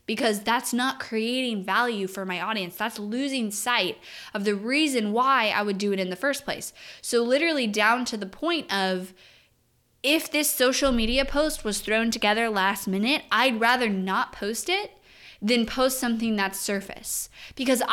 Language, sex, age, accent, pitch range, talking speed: English, female, 20-39, American, 190-250 Hz, 170 wpm